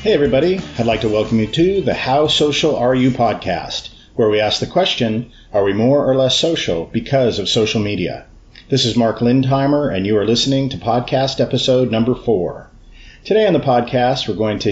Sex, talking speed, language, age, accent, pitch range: male, 200 wpm, English, 40-59, American, 105-130 Hz